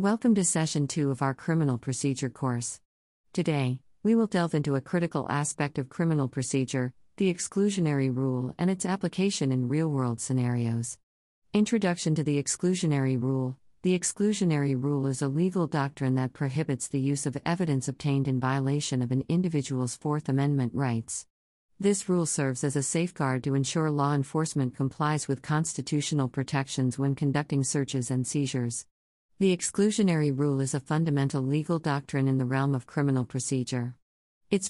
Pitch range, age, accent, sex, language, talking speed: 130-160 Hz, 50-69, American, female, English, 155 wpm